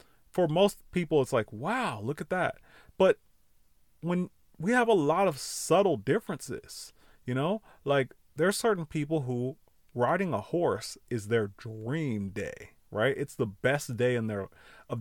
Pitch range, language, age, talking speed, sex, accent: 125-205 Hz, English, 30-49, 165 wpm, male, American